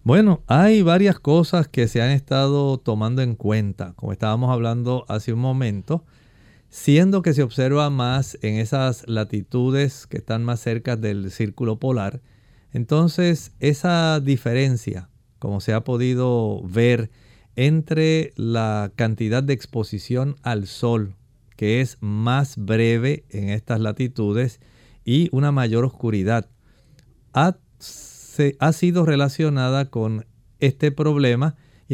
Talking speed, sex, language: 125 wpm, male, Spanish